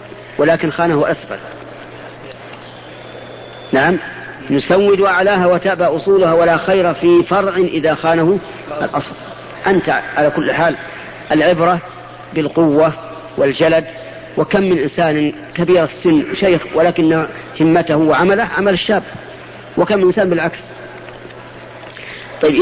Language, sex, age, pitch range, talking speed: Arabic, female, 50-69, 160-190 Hz, 100 wpm